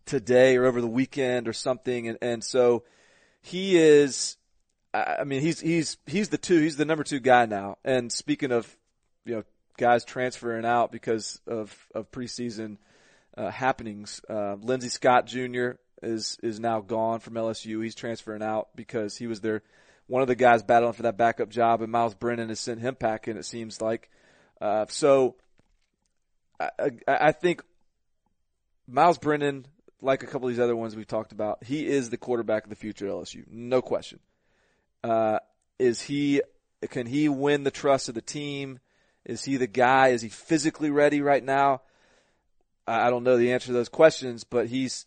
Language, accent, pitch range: English, American, 115-135 Hz